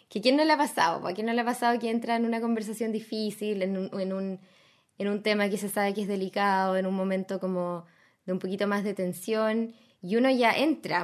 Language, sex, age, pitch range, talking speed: Spanish, female, 20-39, 190-225 Hz, 240 wpm